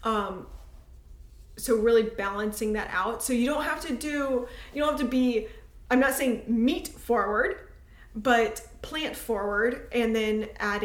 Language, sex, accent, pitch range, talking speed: English, female, American, 210-235 Hz, 155 wpm